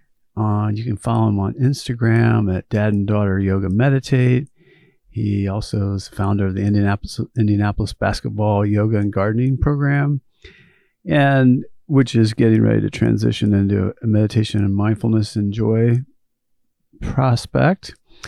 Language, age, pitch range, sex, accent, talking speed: English, 50-69, 105-125 Hz, male, American, 135 wpm